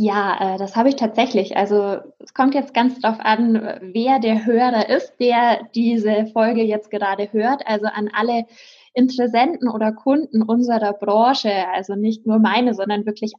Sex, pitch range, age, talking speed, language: female, 210-245 Hz, 20-39, 160 wpm, German